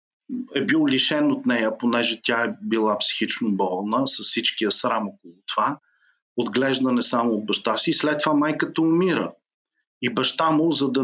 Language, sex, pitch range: Bulgarian, male, 120-180 Hz